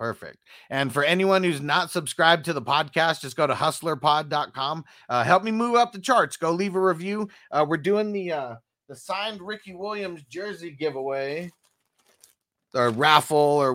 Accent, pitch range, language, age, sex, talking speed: American, 145-185 Hz, English, 30-49, male, 170 wpm